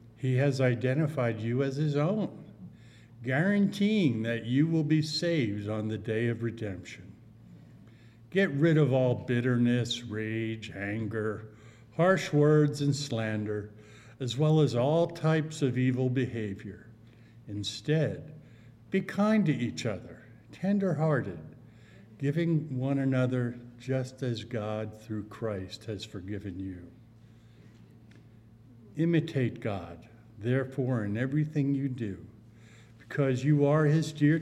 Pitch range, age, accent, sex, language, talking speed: 110-140 Hz, 50-69, American, male, English, 115 wpm